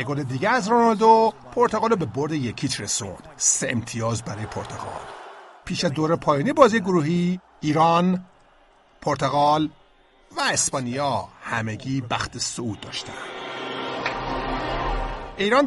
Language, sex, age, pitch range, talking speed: Persian, male, 50-69, 115-180 Hz, 105 wpm